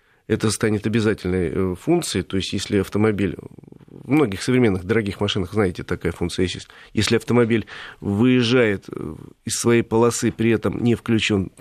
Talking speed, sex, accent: 135 wpm, male, native